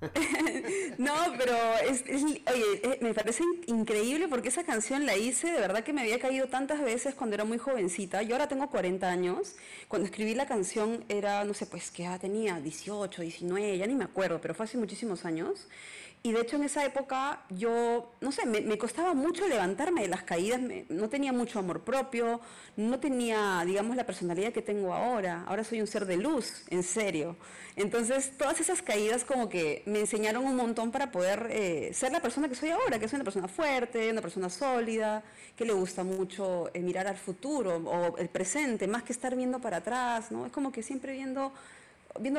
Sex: female